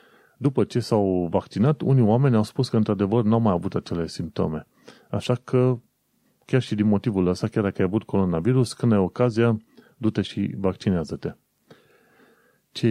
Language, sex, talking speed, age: Romanian, male, 165 wpm, 30-49